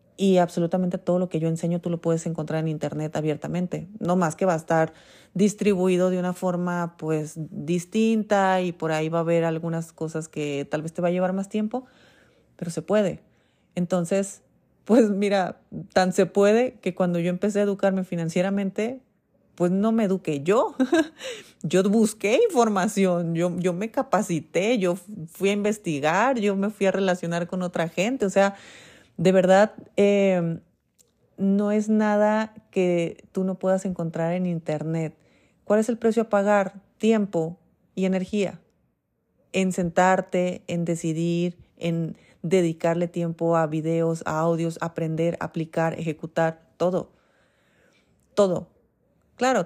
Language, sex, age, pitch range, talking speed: Spanish, female, 30-49, 165-200 Hz, 150 wpm